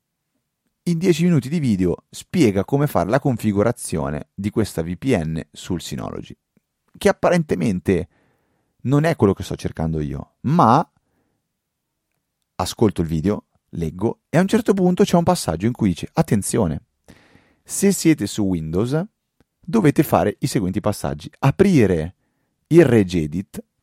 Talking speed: 135 wpm